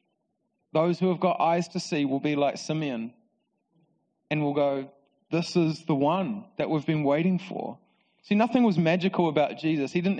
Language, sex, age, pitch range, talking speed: English, male, 30-49, 150-200 Hz, 180 wpm